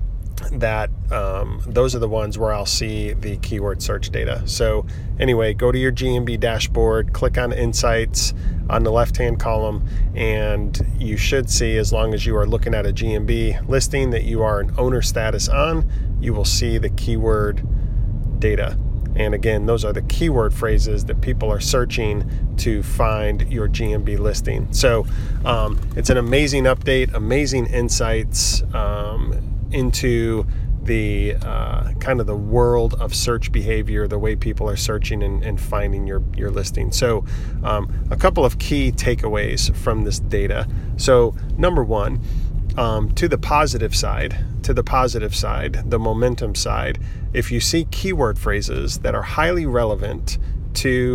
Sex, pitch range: male, 105-120 Hz